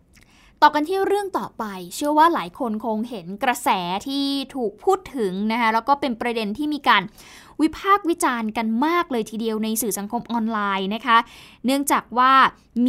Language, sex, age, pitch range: Thai, female, 20-39, 215-275 Hz